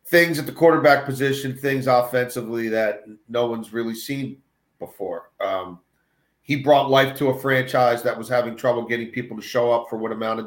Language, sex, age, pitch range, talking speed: English, male, 40-59, 125-170 Hz, 185 wpm